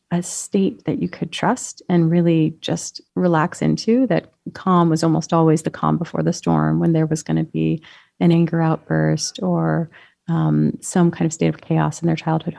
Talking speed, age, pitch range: 195 wpm, 30-49, 160-190 Hz